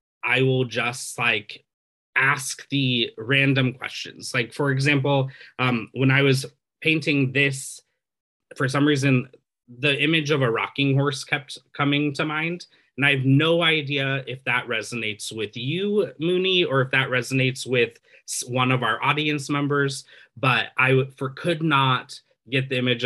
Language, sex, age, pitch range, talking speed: English, male, 20-39, 115-140 Hz, 155 wpm